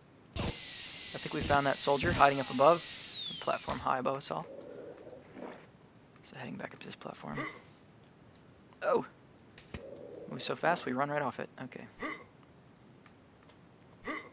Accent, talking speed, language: American, 130 wpm, English